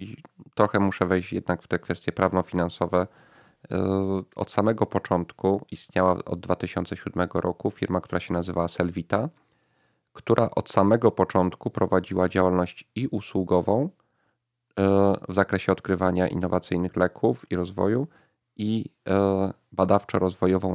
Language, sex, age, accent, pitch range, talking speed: Polish, male, 30-49, native, 90-100 Hz, 105 wpm